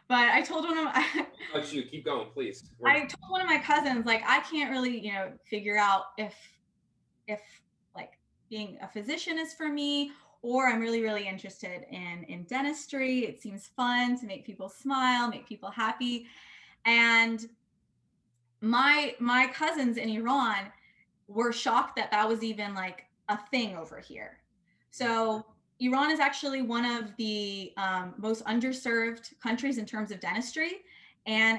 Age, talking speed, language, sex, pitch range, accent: 20-39, 155 wpm, English, female, 205-260 Hz, American